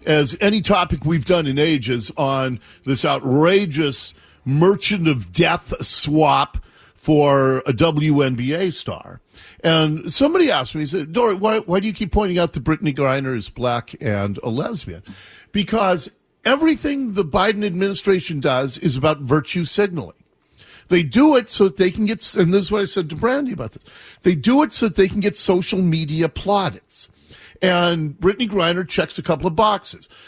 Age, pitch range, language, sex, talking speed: 50-69, 145-205 Hz, English, male, 170 wpm